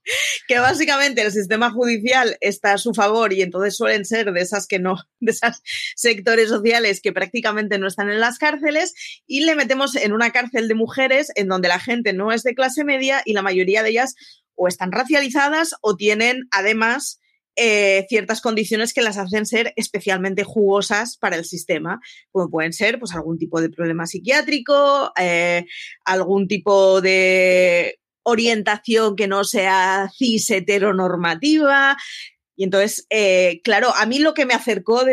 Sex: female